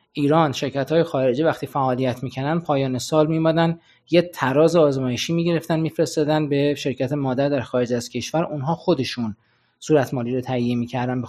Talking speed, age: 155 wpm, 20-39